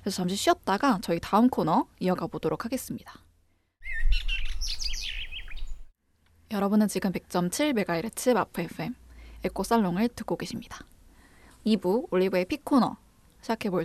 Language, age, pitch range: Korean, 20-39, 180-235 Hz